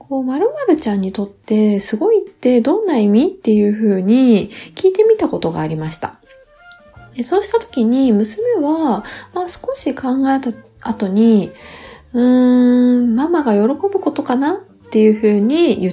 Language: Japanese